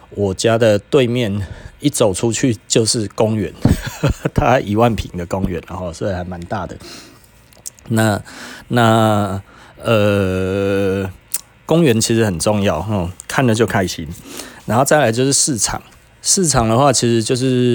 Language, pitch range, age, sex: Chinese, 100-130 Hz, 30-49, male